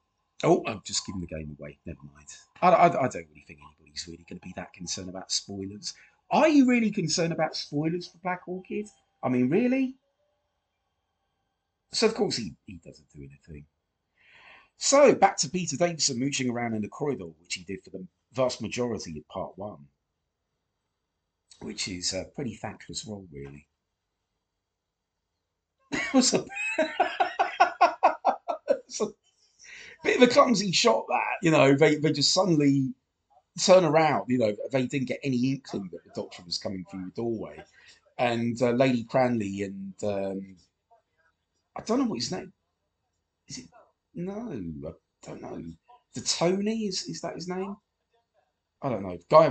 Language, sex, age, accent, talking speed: English, male, 50-69, British, 160 wpm